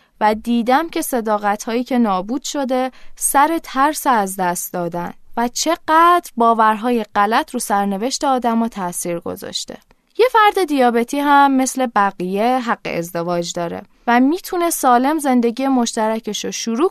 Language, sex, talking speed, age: Persian, female, 130 wpm, 20-39